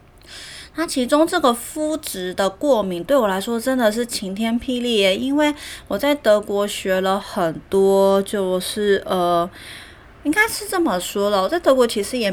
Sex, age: female, 30-49